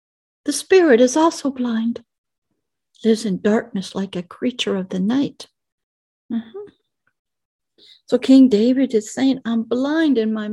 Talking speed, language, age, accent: 135 wpm, English, 60-79, American